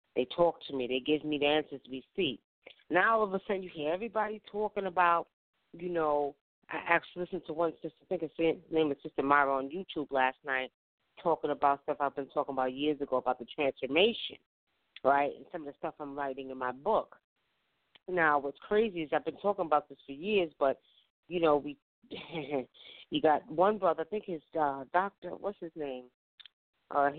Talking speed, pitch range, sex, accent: 200 wpm, 140-175 Hz, female, American